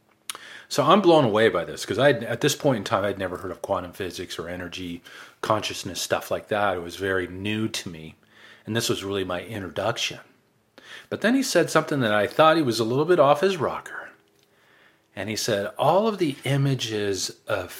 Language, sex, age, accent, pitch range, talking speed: English, male, 40-59, American, 100-135 Hz, 200 wpm